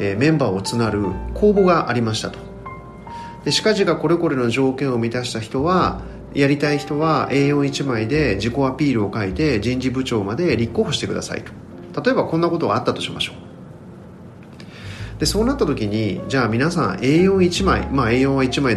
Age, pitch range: 40-59, 100-145 Hz